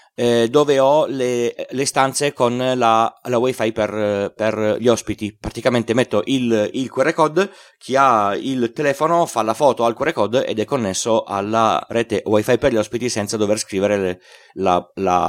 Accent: native